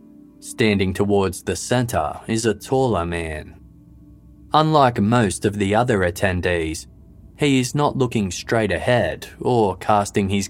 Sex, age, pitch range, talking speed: male, 20-39, 90-120 Hz, 130 wpm